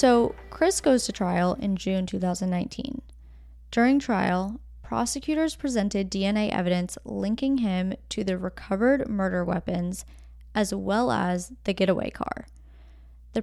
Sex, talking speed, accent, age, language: female, 125 wpm, American, 10-29, English